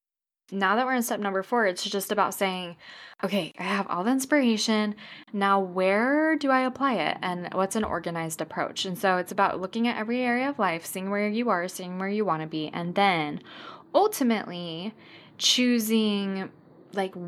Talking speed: 185 wpm